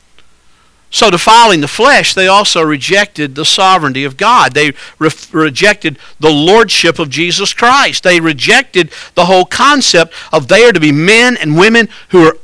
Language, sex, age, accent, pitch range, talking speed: English, male, 50-69, American, 155-235 Hz, 160 wpm